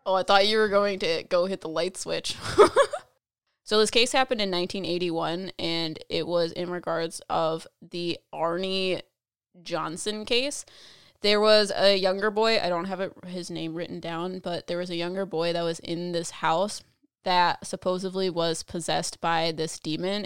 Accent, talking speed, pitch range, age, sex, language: American, 170 wpm, 170-195 Hz, 20-39, female, English